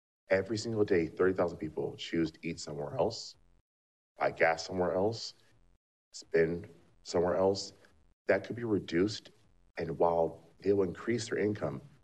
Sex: male